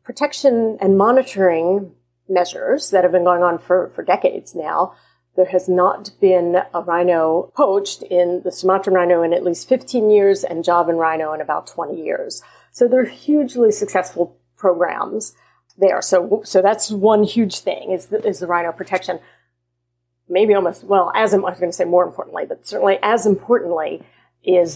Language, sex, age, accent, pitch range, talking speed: English, female, 40-59, American, 170-200 Hz, 170 wpm